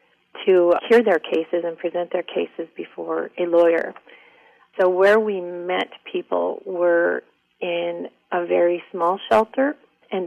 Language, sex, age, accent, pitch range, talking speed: English, female, 40-59, American, 170-195 Hz, 135 wpm